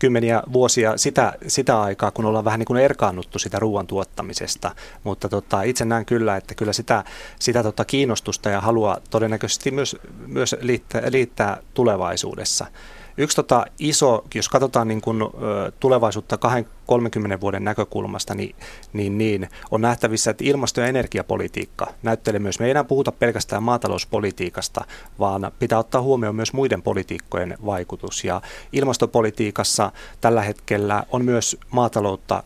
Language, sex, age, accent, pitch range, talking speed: Finnish, male, 30-49, native, 100-125 Hz, 140 wpm